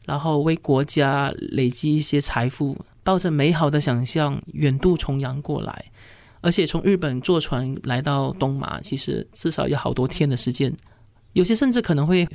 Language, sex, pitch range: Chinese, male, 135-175 Hz